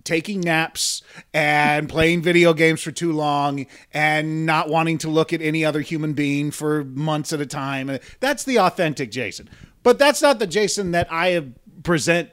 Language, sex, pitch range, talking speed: English, male, 140-180 Hz, 175 wpm